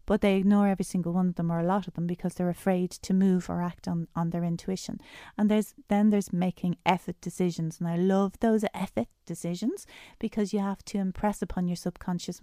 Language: English